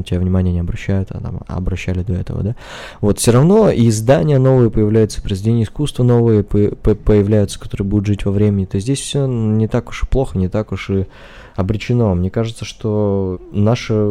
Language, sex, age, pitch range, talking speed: English, male, 20-39, 95-115 Hz, 185 wpm